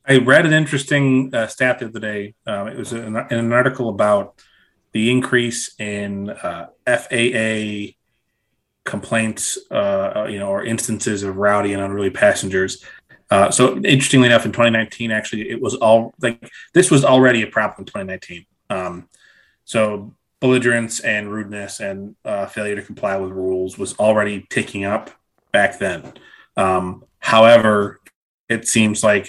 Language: English